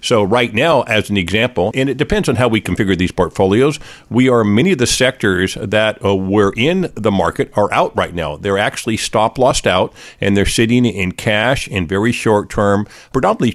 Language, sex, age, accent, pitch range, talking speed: English, male, 50-69, American, 100-120 Hz, 195 wpm